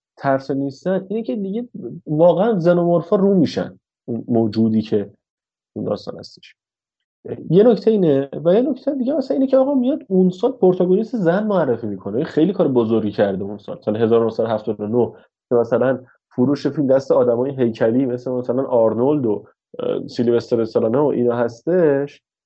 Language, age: Persian, 30-49